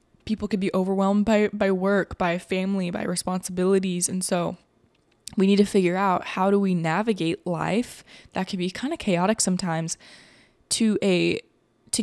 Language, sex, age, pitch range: English, female, 20-39, 175-205 Hz